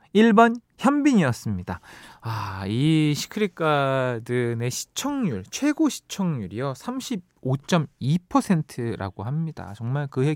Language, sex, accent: Korean, male, native